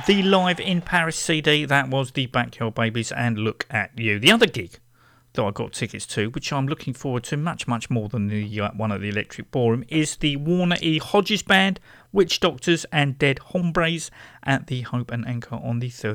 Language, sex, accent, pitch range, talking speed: English, male, British, 115-175 Hz, 205 wpm